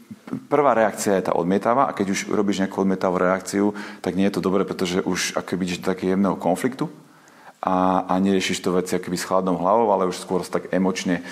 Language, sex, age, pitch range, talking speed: Slovak, male, 40-59, 85-95 Hz, 205 wpm